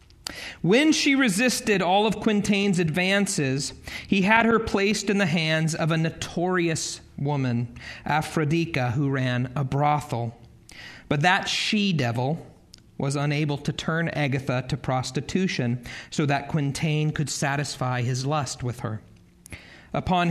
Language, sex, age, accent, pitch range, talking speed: English, male, 40-59, American, 125-155 Hz, 125 wpm